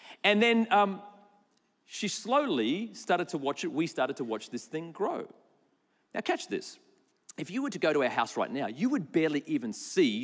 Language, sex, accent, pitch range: English, male, Australian, 180-255 Hz